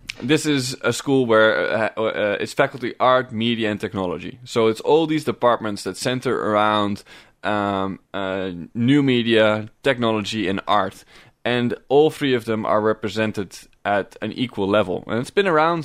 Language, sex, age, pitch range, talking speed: English, male, 20-39, 105-130 Hz, 165 wpm